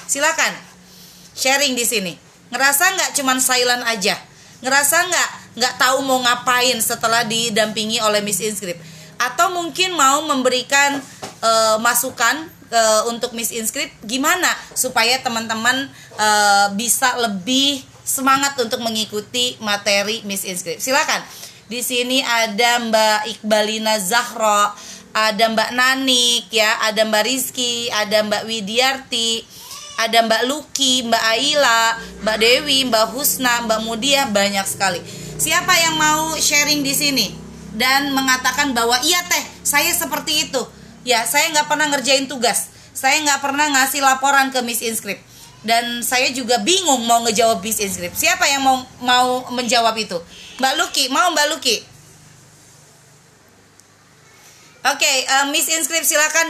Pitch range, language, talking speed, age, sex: 220-275 Hz, Indonesian, 135 wpm, 20-39, female